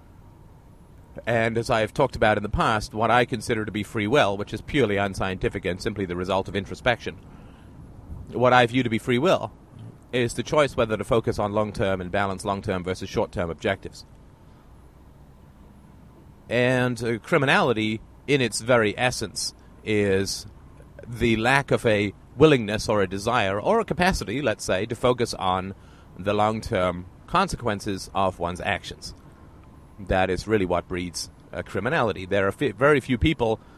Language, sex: English, male